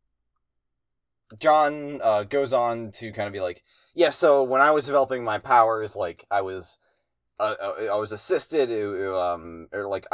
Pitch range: 95-120 Hz